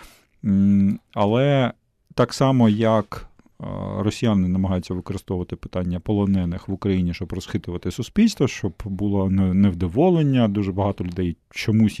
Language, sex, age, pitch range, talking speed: Ukrainian, male, 40-59, 95-115 Hz, 105 wpm